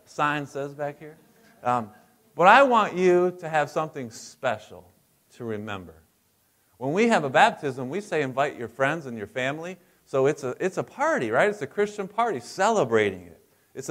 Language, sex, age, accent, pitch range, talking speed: English, male, 30-49, American, 110-150 Hz, 180 wpm